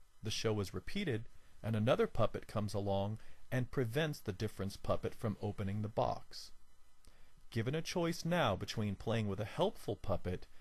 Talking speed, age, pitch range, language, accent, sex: 160 wpm, 40-59, 100-130 Hz, English, American, male